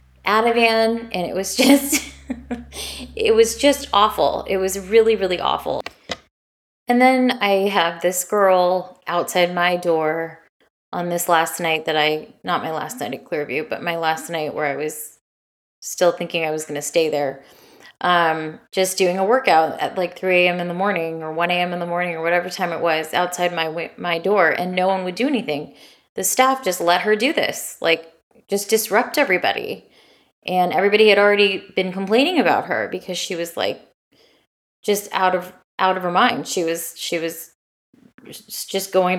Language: English